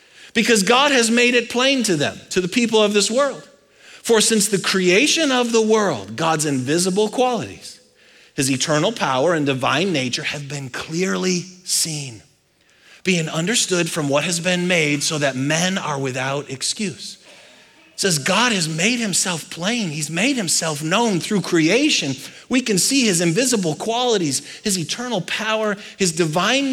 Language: English